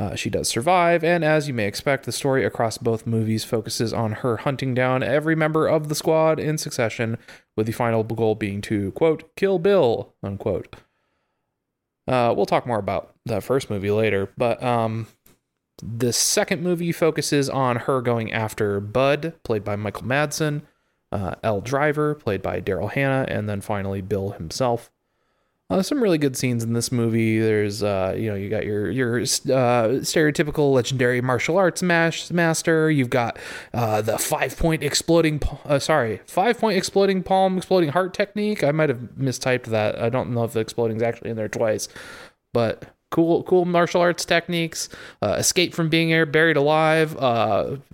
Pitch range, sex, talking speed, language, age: 115-165 Hz, male, 170 wpm, English, 30-49